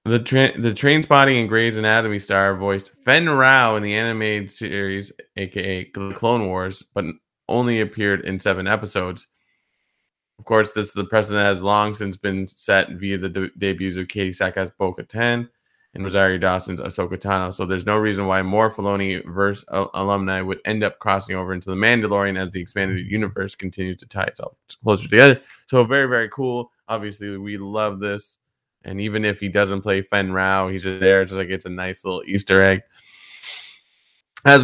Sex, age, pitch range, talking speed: male, 20-39, 95-115 Hz, 185 wpm